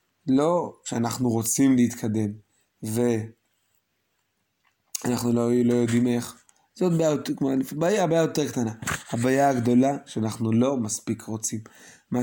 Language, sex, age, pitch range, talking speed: Hebrew, male, 20-39, 120-165 Hz, 105 wpm